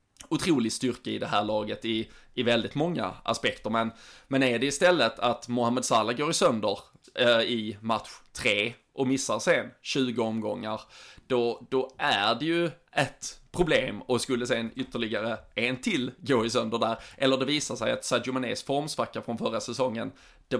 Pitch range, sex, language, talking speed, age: 115-135 Hz, male, Swedish, 170 wpm, 20-39